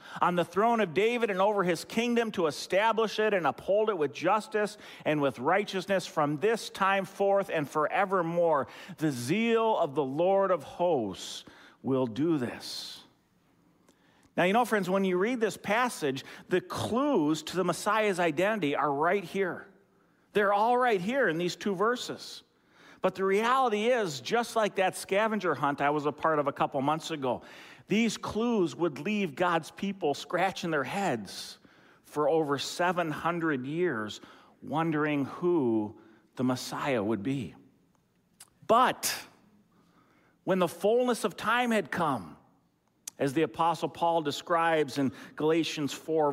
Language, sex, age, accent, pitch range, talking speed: English, male, 50-69, American, 145-200 Hz, 150 wpm